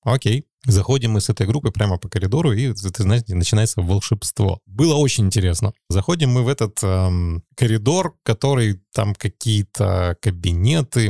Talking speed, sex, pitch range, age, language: 150 wpm, male, 100-120 Hz, 20-39, Russian